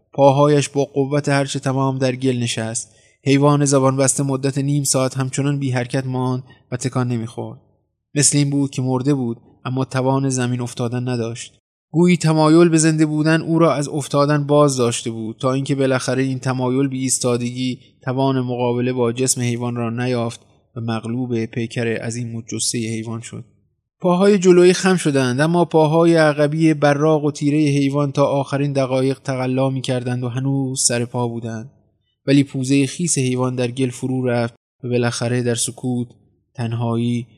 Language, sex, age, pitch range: Persian, male, 20-39, 120-140 Hz